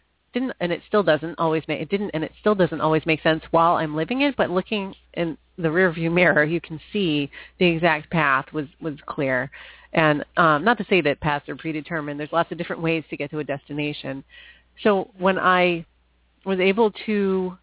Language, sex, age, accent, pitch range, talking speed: English, female, 40-59, American, 150-185 Hz, 210 wpm